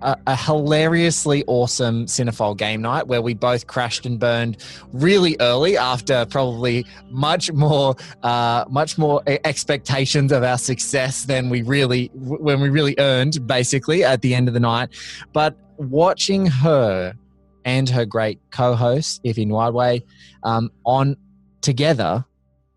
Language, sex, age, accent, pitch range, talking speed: English, male, 20-39, Australian, 120-150 Hz, 135 wpm